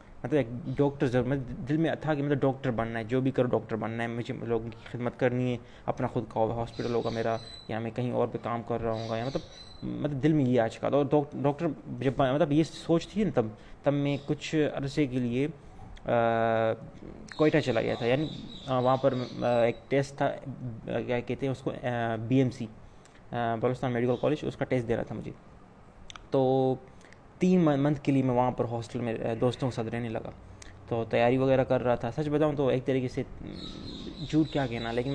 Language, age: Urdu, 20-39